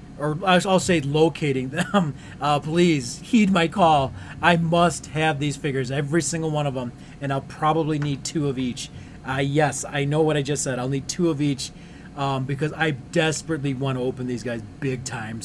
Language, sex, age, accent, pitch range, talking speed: English, male, 30-49, American, 130-160 Hz, 200 wpm